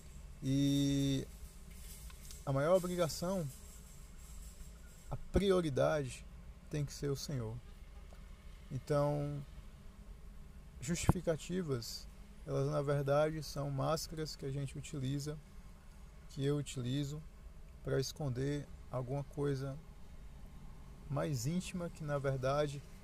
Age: 20-39